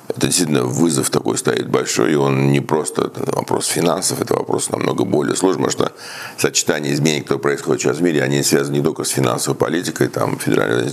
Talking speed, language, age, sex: 190 wpm, Russian, 50-69, male